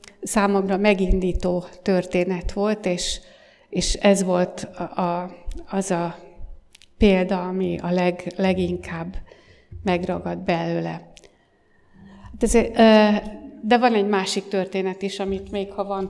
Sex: female